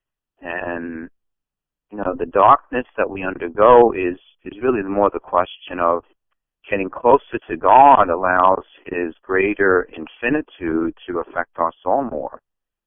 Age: 50-69